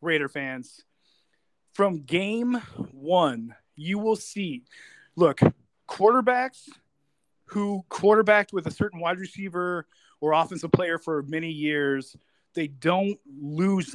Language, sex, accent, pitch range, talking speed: English, male, American, 150-200 Hz, 110 wpm